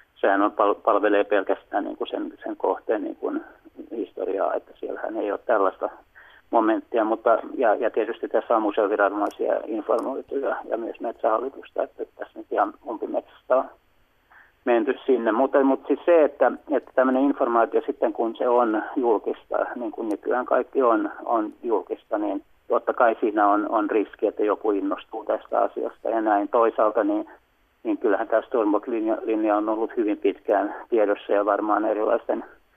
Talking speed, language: 155 wpm, Finnish